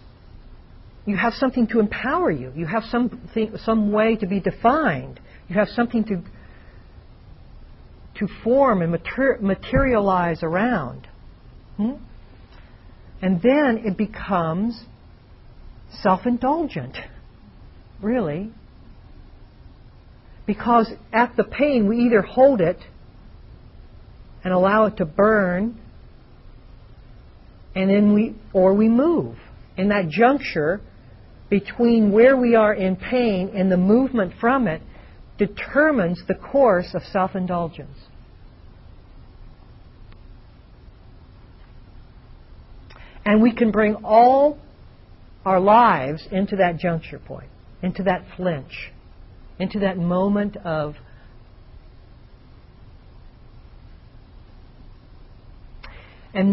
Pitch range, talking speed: 160-225 Hz, 95 wpm